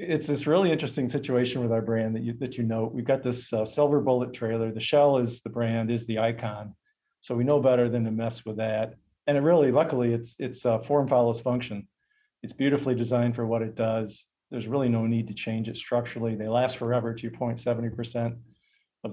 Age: 40-59